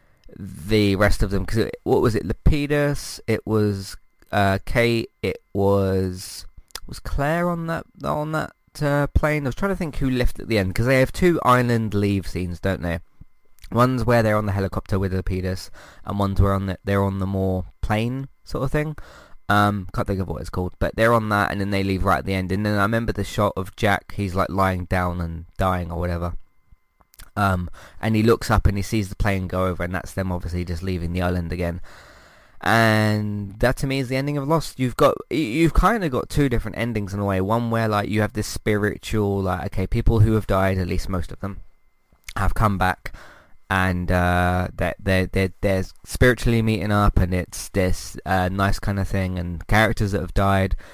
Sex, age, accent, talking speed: male, 20-39, British, 215 wpm